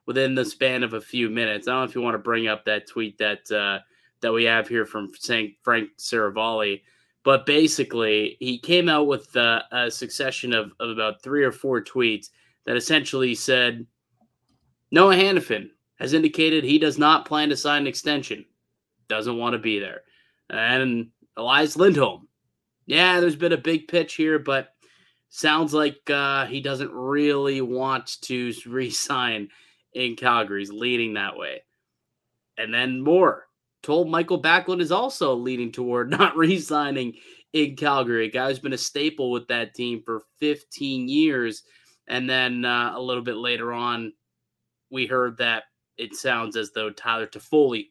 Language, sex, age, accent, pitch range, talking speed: English, male, 20-39, American, 115-150 Hz, 170 wpm